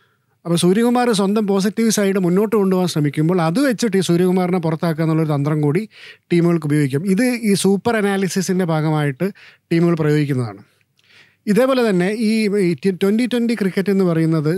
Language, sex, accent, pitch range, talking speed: Malayalam, male, native, 160-200 Hz, 135 wpm